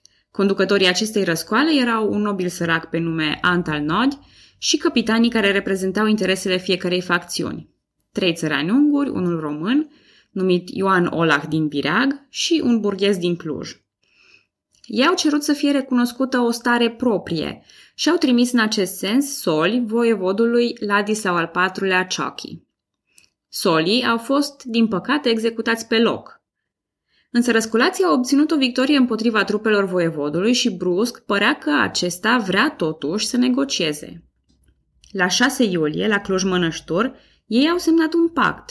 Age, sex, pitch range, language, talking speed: 20-39, female, 170-240 Hz, Romanian, 140 wpm